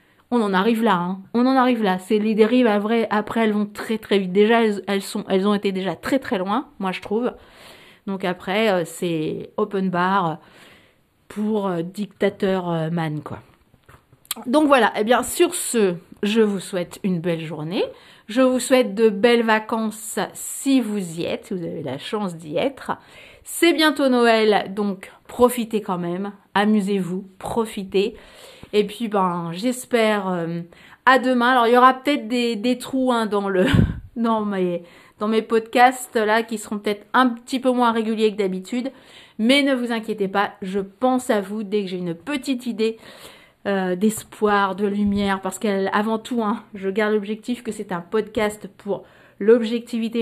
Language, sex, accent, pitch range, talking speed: French, female, French, 195-235 Hz, 170 wpm